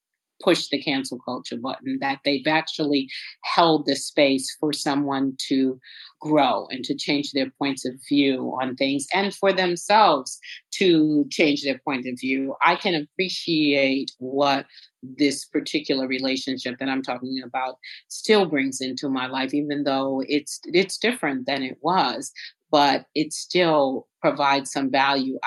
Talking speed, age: 150 wpm, 40-59